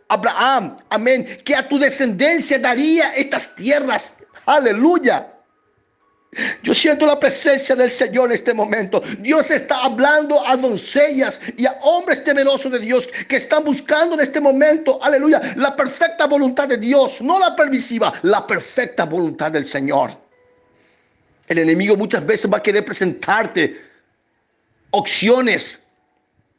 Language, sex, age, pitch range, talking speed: Spanish, male, 50-69, 210-275 Hz, 135 wpm